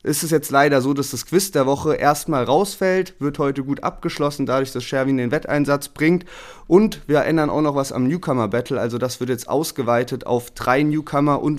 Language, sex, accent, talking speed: German, male, German, 200 wpm